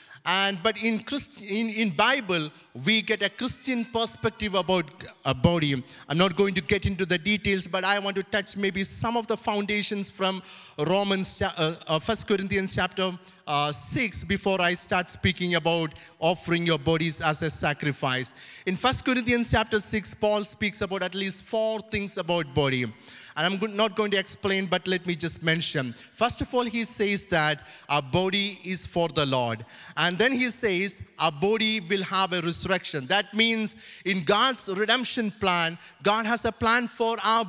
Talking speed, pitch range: 180 wpm, 170-210 Hz